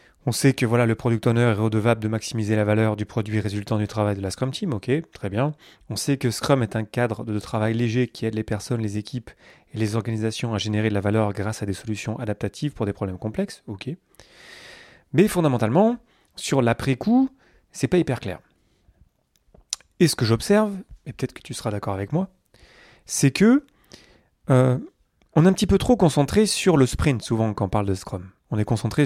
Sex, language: male, French